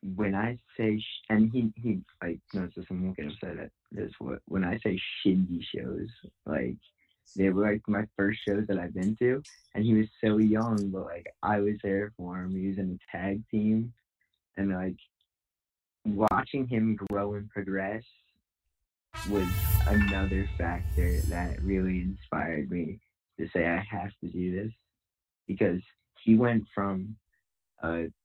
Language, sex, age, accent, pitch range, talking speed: English, male, 20-39, American, 90-110 Hz, 155 wpm